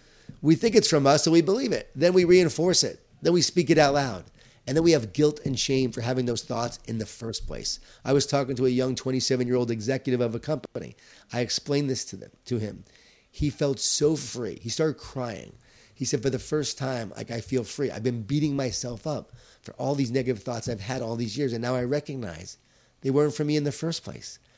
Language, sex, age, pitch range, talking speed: English, male, 30-49, 120-150 Hz, 235 wpm